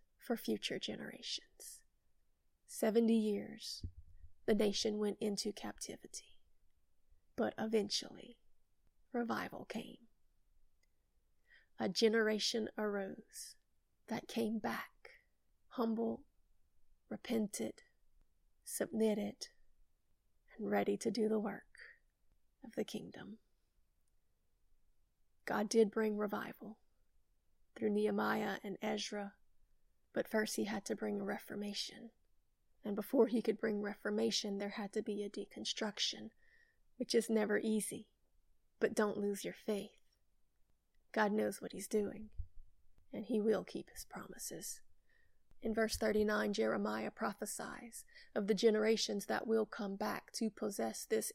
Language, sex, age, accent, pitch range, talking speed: English, female, 30-49, American, 205-230 Hz, 110 wpm